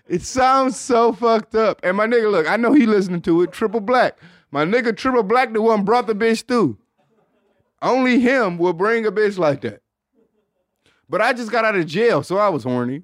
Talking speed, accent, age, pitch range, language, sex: 210 wpm, American, 20-39, 155-225 Hz, English, male